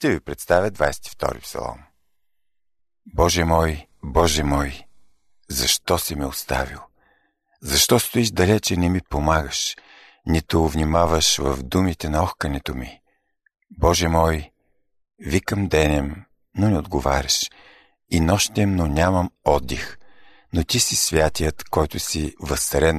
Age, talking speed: 50-69, 115 wpm